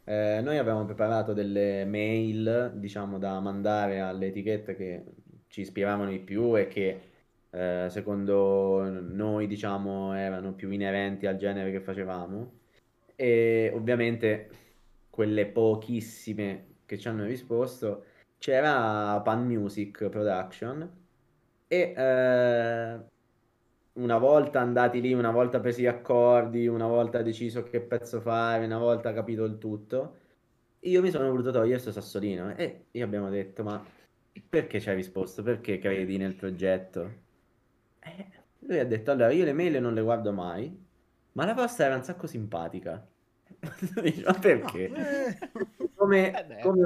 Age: 20-39